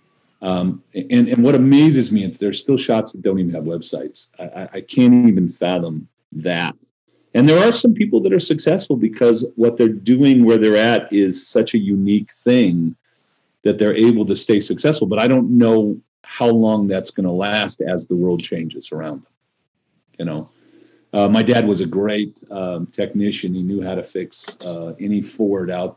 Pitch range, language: 95-120 Hz, English